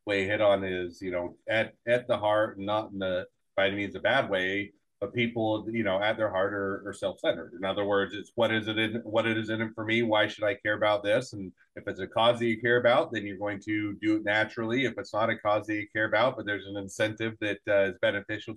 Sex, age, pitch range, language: male, 30-49, 100-115 Hz, English